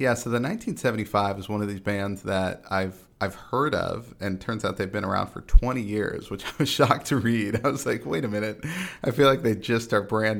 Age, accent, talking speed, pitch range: 40-59, American, 250 wpm, 95-110 Hz